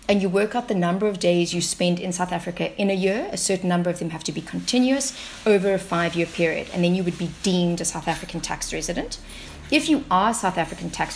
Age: 30-49